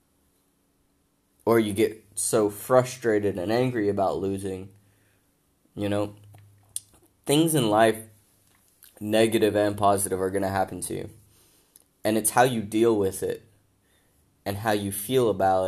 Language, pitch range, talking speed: English, 95-110 Hz, 135 wpm